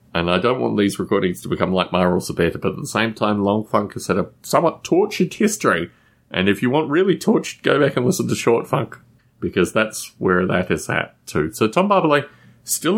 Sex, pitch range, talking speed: male, 90-125 Hz, 220 wpm